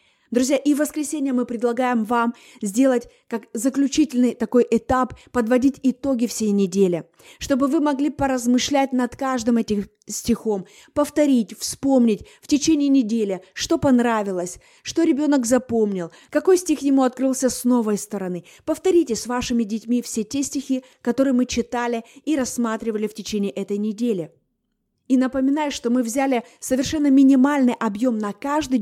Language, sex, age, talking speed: Russian, female, 20-39, 140 wpm